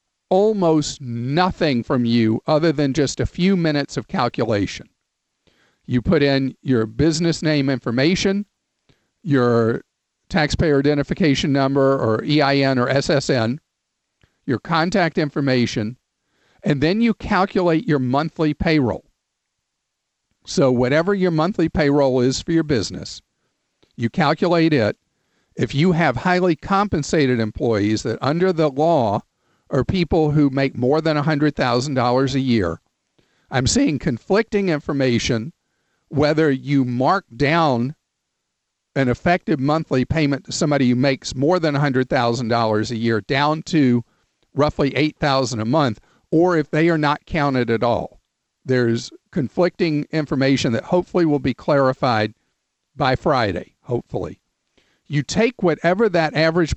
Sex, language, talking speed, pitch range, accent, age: male, English, 125 wpm, 125-165 Hz, American, 50-69